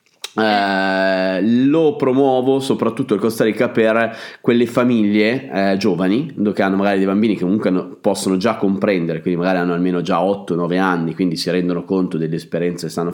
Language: Italian